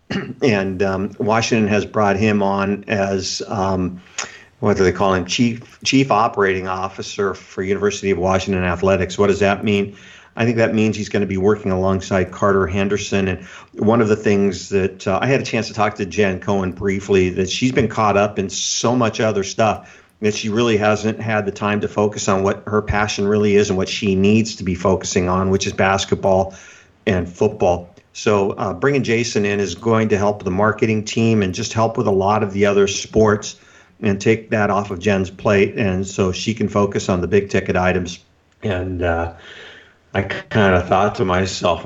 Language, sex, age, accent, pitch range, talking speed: English, male, 50-69, American, 95-105 Hz, 200 wpm